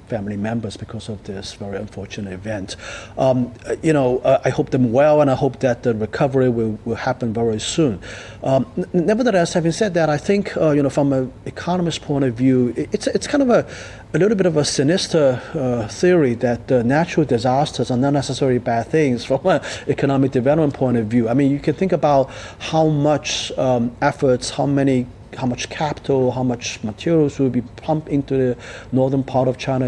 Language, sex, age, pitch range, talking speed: English, male, 40-59, 120-155 Hz, 200 wpm